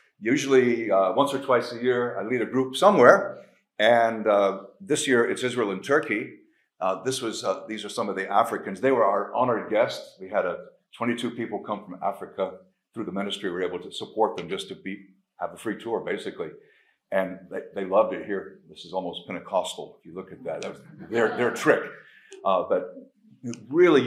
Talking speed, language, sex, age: 210 wpm, English, male, 50-69